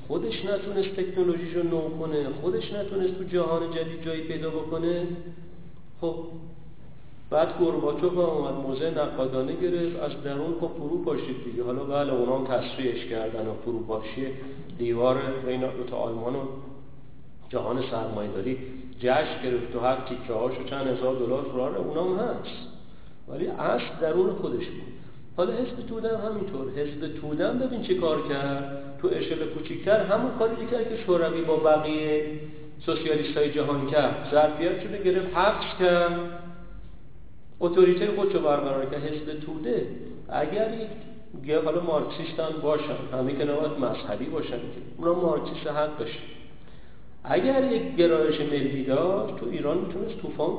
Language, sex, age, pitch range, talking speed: Persian, male, 50-69, 135-175 Hz, 135 wpm